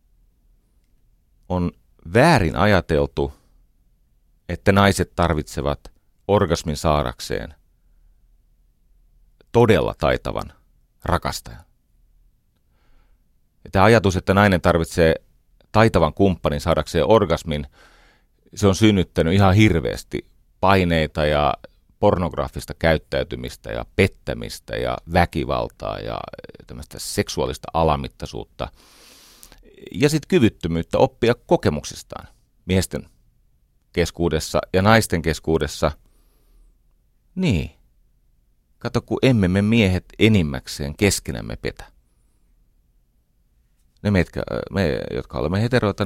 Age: 40-59